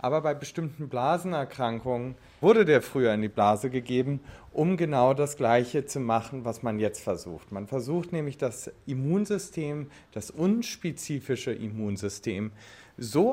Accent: German